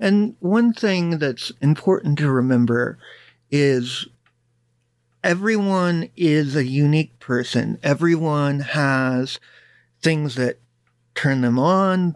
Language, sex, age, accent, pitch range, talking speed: English, male, 50-69, American, 125-170 Hz, 100 wpm